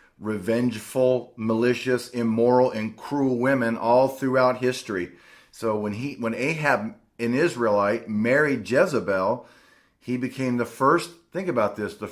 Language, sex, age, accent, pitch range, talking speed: English, male, 40-59, American, 110-130 Hz, 130 wpm